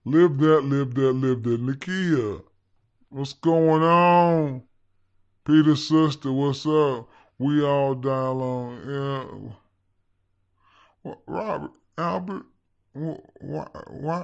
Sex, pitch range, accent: female, 95-155 Hz, American